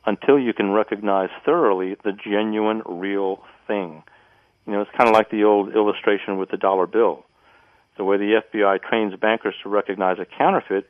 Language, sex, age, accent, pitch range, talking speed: English, male, 50-69, American, 95-110 Hz, 175 wpm